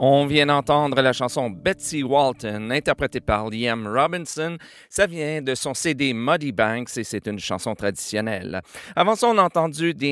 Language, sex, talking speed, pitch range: French, male, 170 wpm, 110-140 Hz